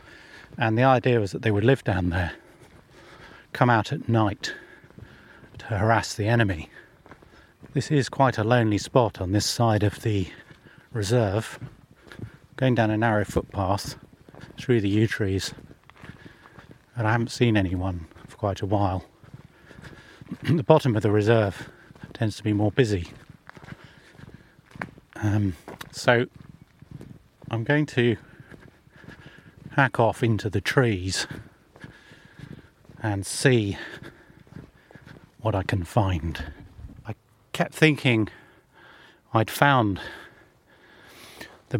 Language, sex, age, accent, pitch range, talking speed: English, male, 40-59, British, 105-130 Hz, 115 wpm